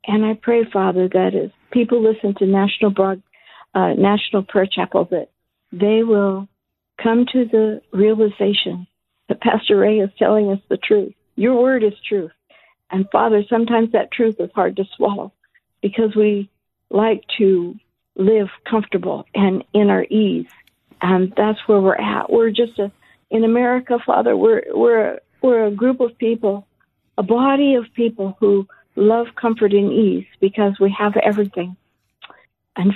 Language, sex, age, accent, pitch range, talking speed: English, female, 60-79, American, 205-235 Hz, 155 wpm